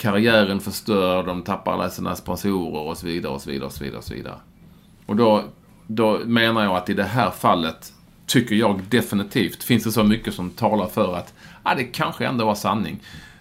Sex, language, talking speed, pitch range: male, English, 205 wpm, 90-115 Hz